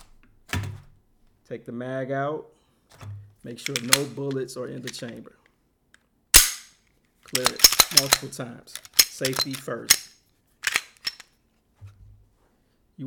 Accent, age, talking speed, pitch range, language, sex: American, 30-49, 85 wpm, 115-135 Hz, English, male